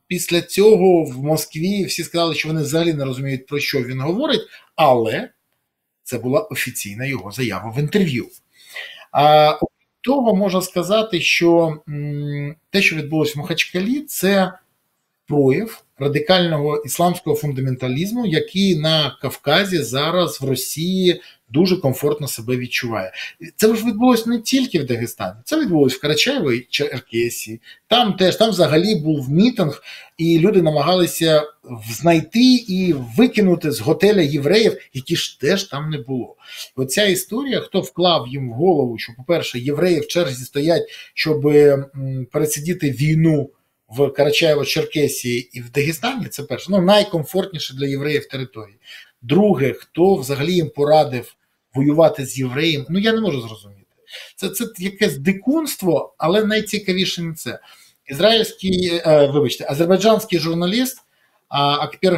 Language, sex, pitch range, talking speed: Ukrainian, male, 140-185 Hz, 130 wpm